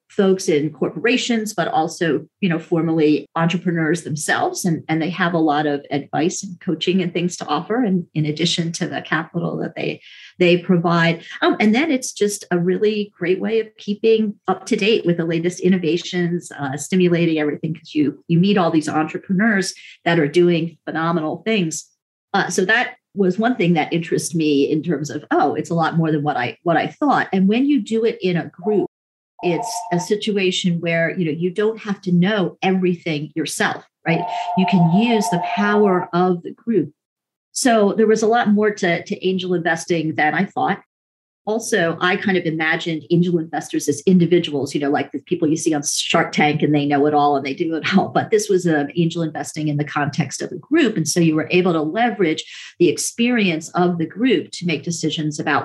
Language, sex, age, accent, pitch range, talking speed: English, female, 40-59, American, 160-195 Hz, 205 wpm